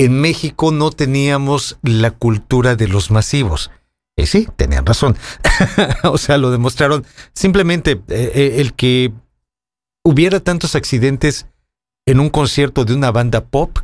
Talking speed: 140 wpm